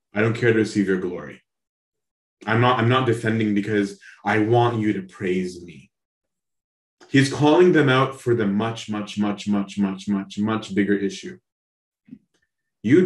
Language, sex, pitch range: English, male, 100-125 Hz